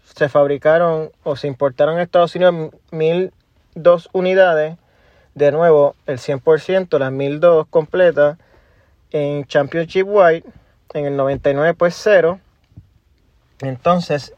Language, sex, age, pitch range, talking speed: Spanish, male, 30-49, 145-180 Hz, 110 wpm